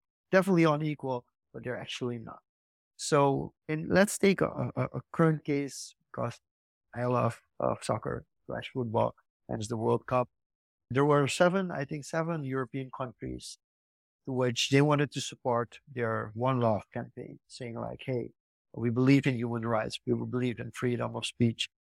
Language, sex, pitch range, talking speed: English, male, 120-145 Hz, 155 wpm